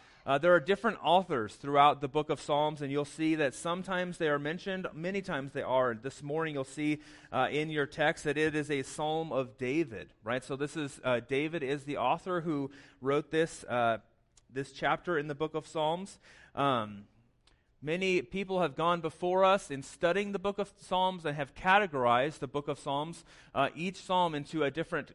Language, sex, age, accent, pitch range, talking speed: English, male, 30-49, American, 135-165 Hz, 200 wpm